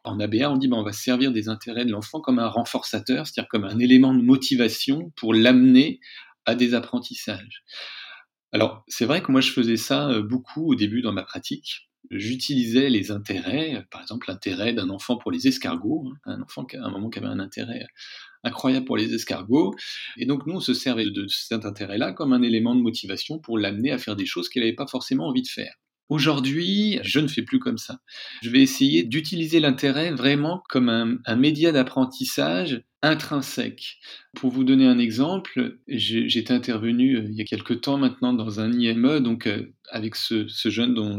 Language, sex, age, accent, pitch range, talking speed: French, male, 40-59, French, 115-140 Hz, 195 wpm